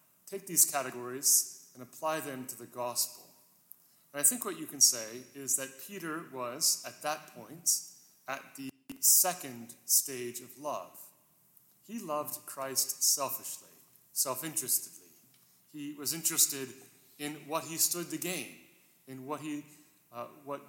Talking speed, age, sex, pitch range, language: 140 wpm, 30-49, male, 130-165 Hz, English